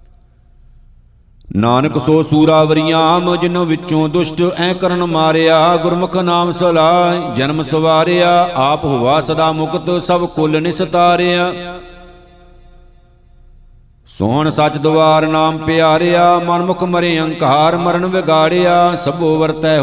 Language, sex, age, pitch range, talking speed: Punjabi, male, 50-69, 155-175 Hz, 105 wpm